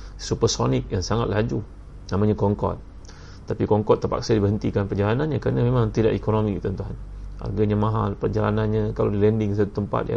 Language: Malay